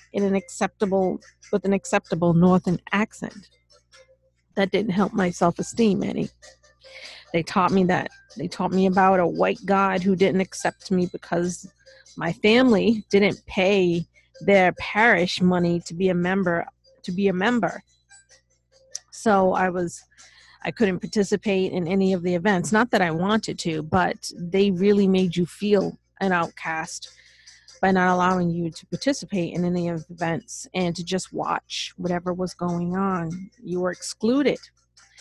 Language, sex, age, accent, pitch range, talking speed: English, female, 40-59, American, 170-200 Hz, 155 wpm